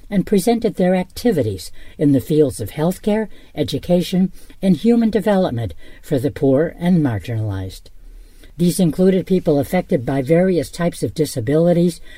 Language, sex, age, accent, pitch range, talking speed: English, female, 60-79, American, 130-175 Hz, 135 wpm